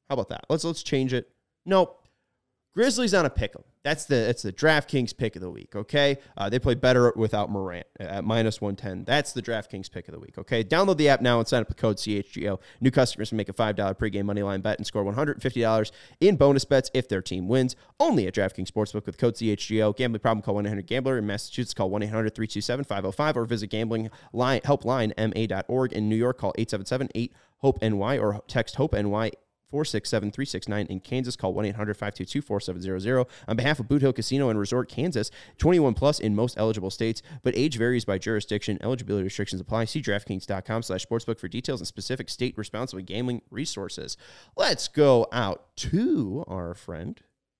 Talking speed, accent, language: 200 wpm, American, English